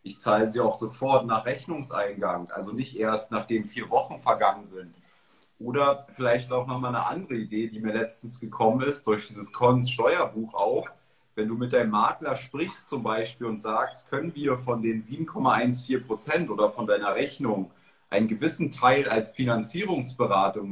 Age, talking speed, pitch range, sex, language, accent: 40-59, 165 wpm, 110-130 Hz, male, German, German